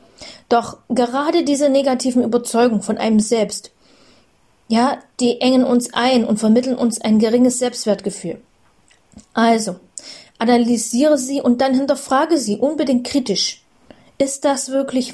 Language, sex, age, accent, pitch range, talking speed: German, female, 30-49, German, 225-270 Hz, 125 wpm